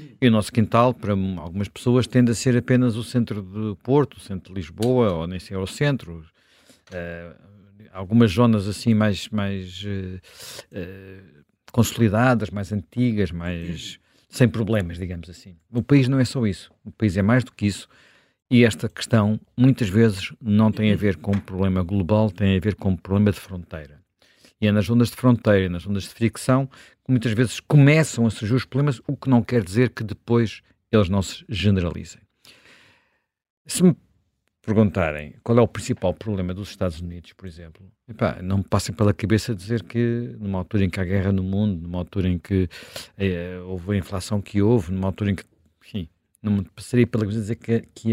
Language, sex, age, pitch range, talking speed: Portuguese, male, 50-69, 95-115 Hz, 190 wpm